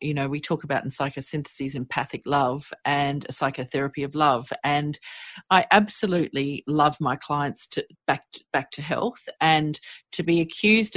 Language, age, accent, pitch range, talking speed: English, 40-59, Australian, 145-175 Hz, 165 wpm